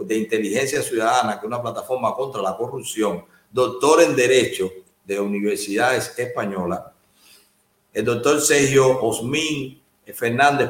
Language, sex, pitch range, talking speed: Spanish, male, 115-155 Hz, 120 wpm